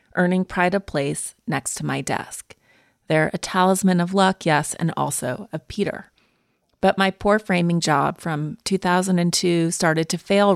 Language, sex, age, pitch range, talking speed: English, female, 30-49, 160-205 Hz, 160 wpm